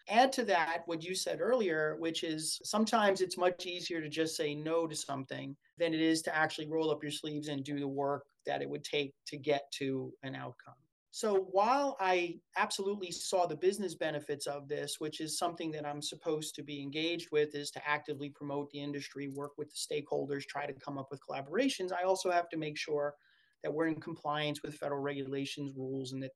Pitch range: 145-180 Hz